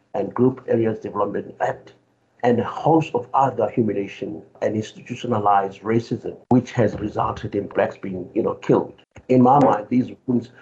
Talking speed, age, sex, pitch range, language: 160 wpm, 60-79, male, 110-135 Hz, English